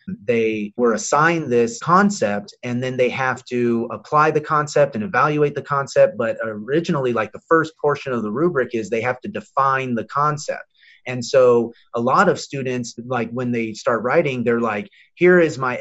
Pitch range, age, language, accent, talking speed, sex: 120-160 Hz, 30-49, English, American, 185 wpm, male